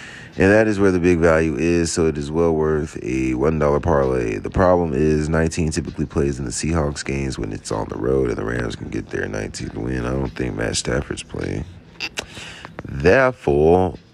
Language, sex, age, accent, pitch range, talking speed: English, male, 40-59, American, 75-90 Hz, 200 wpm